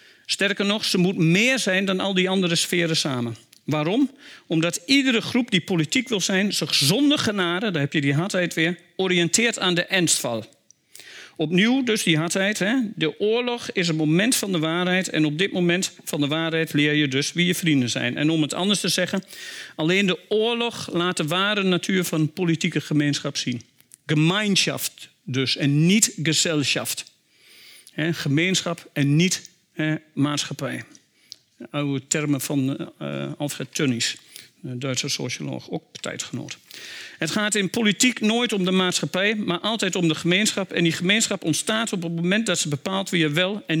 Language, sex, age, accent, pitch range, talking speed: Dutch, male, 50-69, Dutch, 155-195 Hz, 175 wpm